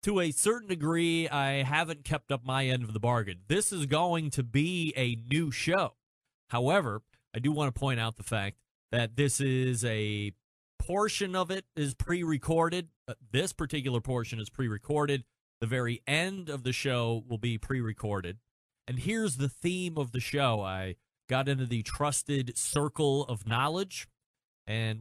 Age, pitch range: 30-49, 115-150 Hz